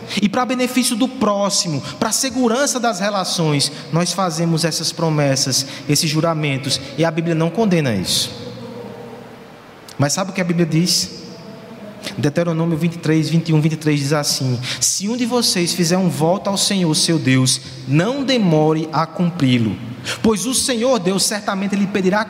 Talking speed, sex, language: 155 wpm, male, Portuguese